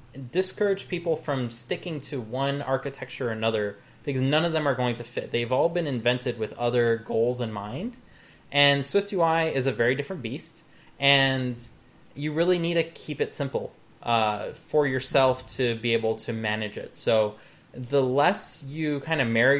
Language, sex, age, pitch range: English, male, 20-39, 115-140 Hz